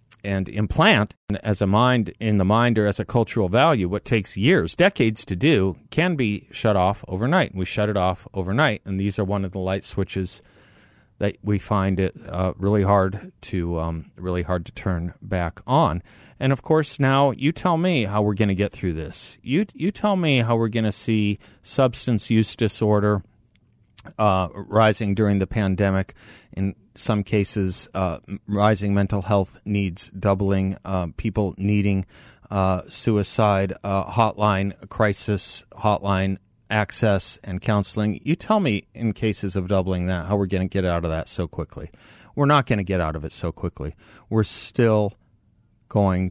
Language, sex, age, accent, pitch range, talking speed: English, male, 40-59, American, 95-110 Hz, 180 wpm